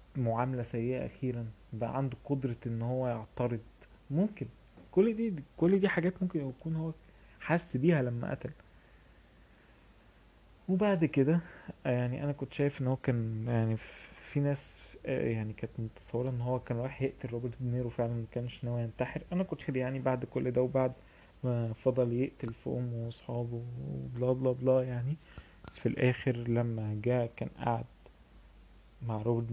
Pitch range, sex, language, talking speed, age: 115-135 Hz, male, Arabic, 150 wpm, 20-39